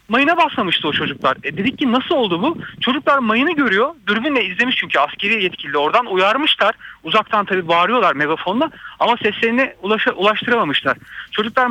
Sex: male